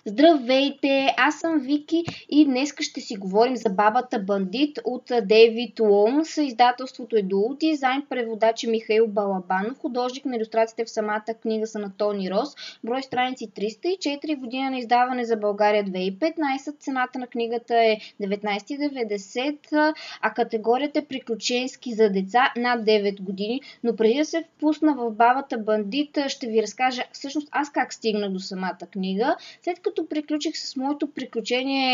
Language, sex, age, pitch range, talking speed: Bulgarian, female, 20-39, 220-285 Hz, 145 wpm